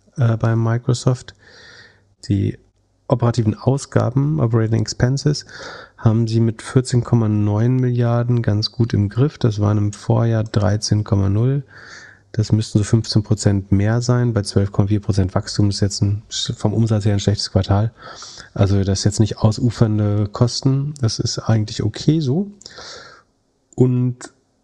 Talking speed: 135 wpm